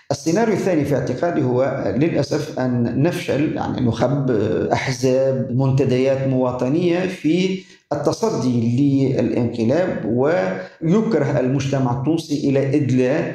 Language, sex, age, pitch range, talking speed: Arabic, male, 50-69, 130-150 Hz, 95 wpm